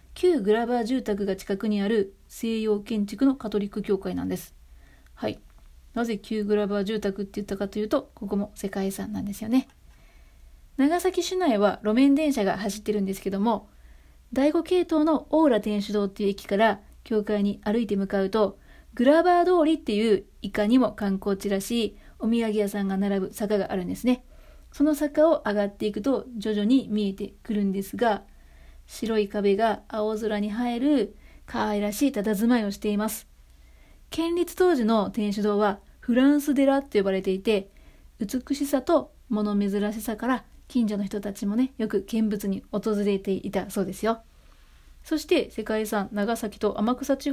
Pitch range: 200-250 Hz